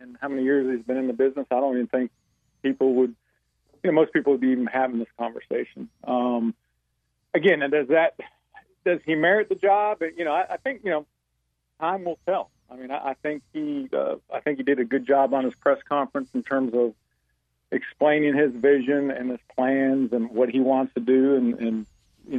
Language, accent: English, American